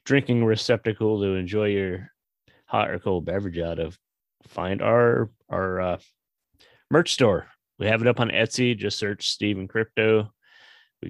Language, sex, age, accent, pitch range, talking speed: English, male, 30-49, American, 90-115 Hz, 150 wpm